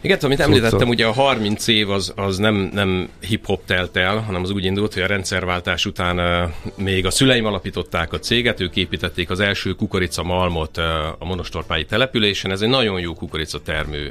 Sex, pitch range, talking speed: male, 80-100 Hz, 175 wpm